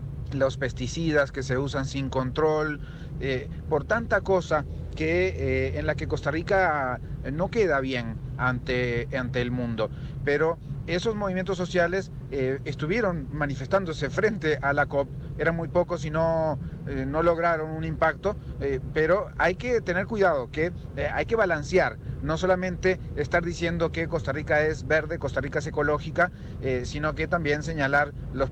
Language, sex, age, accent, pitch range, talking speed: Spanish, male, 40-59, Mexican, 130-160 Hz, 160 wpm